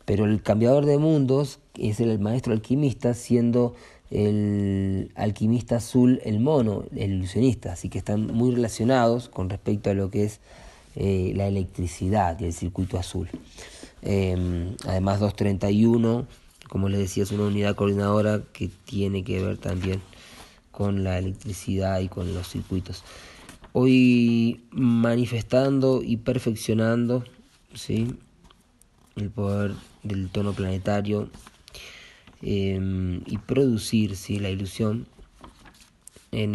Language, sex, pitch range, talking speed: Spanish, male, 95-115 Hz, 120 wpm